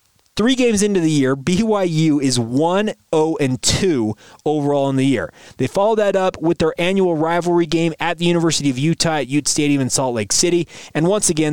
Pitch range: 130-175 Hz